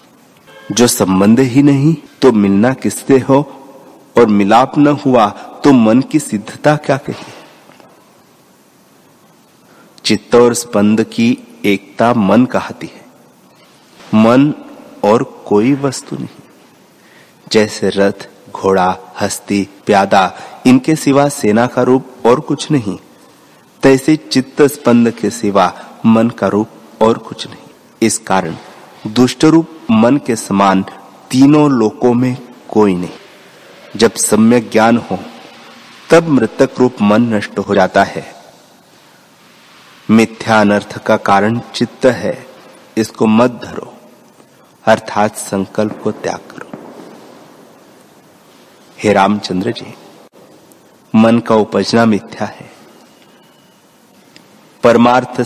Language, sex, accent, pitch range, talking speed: Hindi, male, native, 105-135 Hz, 110 wpm